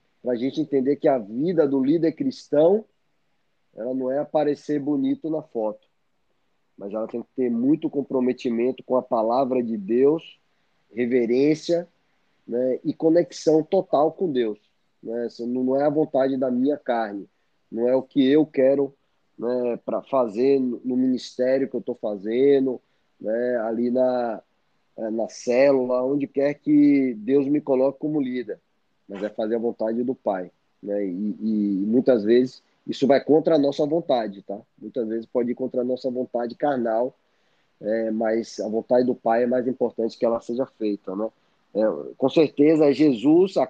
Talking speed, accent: 160 wpm, Brazilian